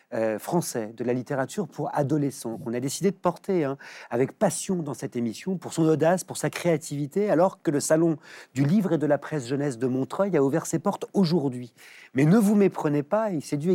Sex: male